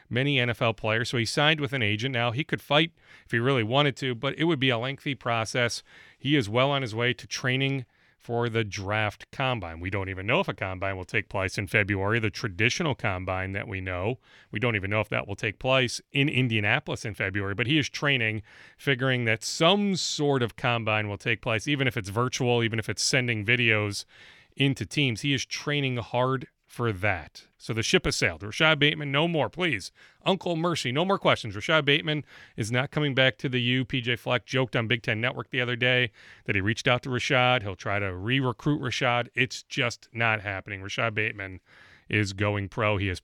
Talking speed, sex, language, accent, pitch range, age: 215 wpm, male, English, American, 110-150 Hz, 30-49